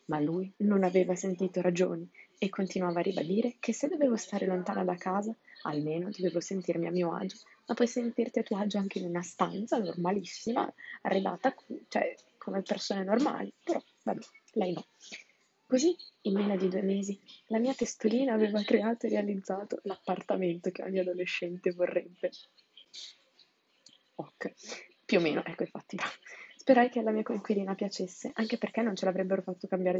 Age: 20-39